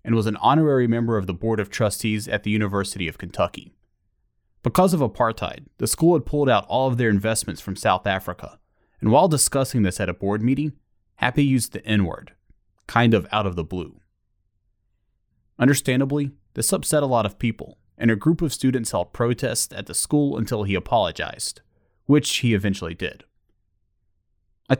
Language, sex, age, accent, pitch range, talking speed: English, male, 30-49, American, 95-130 Hz, 175 wpm